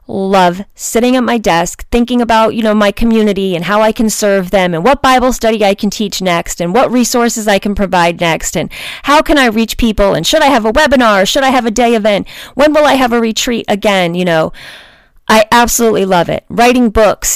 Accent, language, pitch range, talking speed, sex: American, English, 175-235 Hz, 230 wpm, female